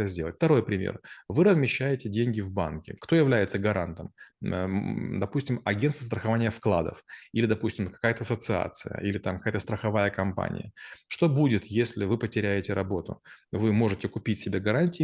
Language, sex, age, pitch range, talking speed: Russian, male, 30-49, 100-120 Hz, 140 wpm